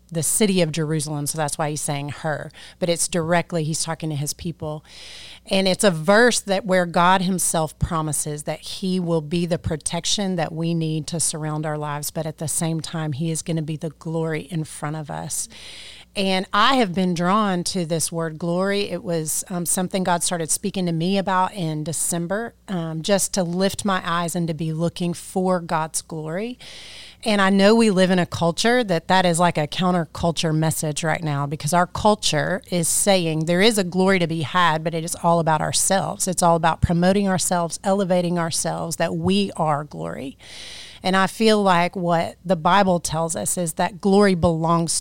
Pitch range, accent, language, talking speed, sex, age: 160-185 Hz, American, English, 200 wpm, female, 30-49